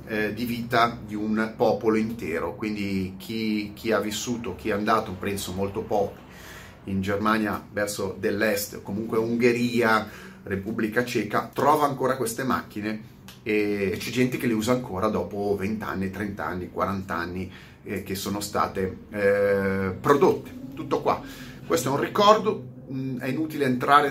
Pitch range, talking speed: 105-125 Hz, 140 wpm